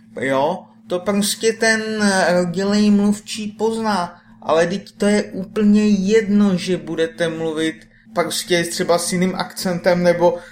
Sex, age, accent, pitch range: male, 30-49, native, 155-195 Hz